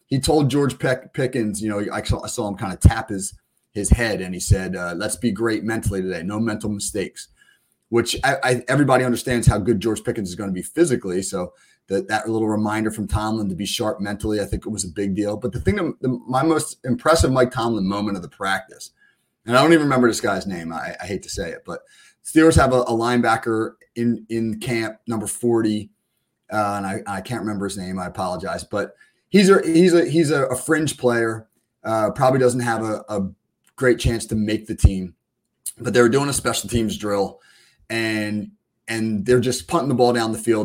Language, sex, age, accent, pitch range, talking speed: English, male, 30-49, American, 100-125 Hz, 220 wpm